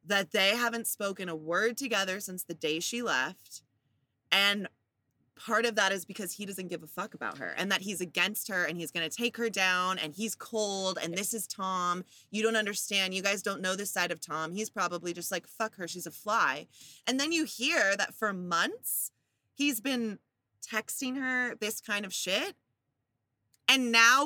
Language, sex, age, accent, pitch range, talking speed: English, female, 20-39, American, 160-220 Hz, 200 wpm